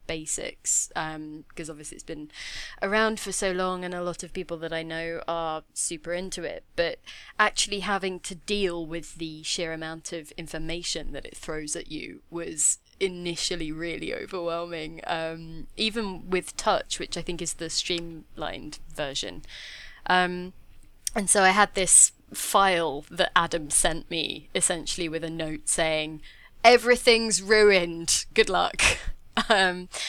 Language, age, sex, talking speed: English, 20-39, female, 150 wpm